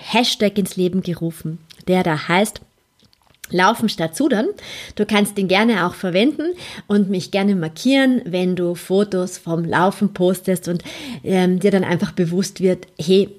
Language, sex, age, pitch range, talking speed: German, female, 30-49, 175-210 Hz, 150 wpm